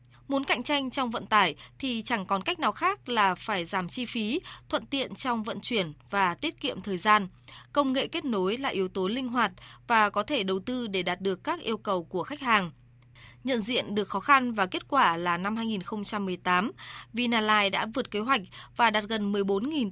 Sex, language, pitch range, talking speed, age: female, Vietnamese, 195-245 Hz, 210 wpm, 20-39